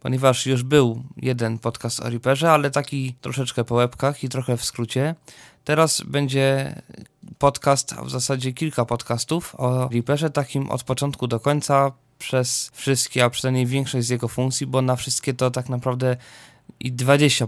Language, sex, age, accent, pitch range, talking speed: Polish, male, 20-39, native, 120-145 Hz, 160 wpm